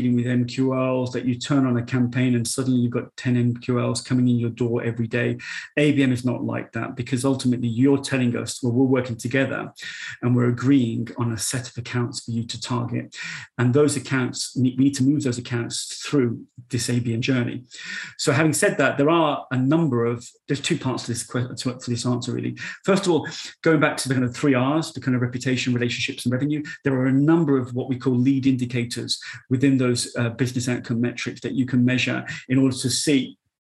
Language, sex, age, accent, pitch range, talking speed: English, male, 30-49, British, 120-135 Hz, 210 wpm